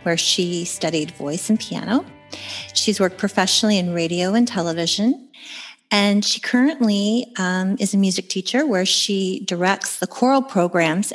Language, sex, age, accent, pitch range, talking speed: English, female, 40-59, American, 175-220 Hz, 145 wpm